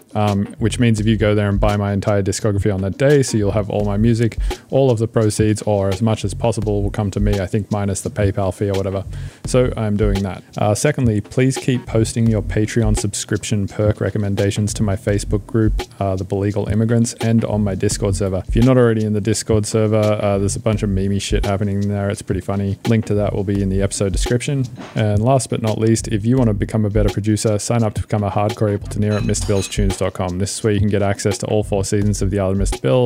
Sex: male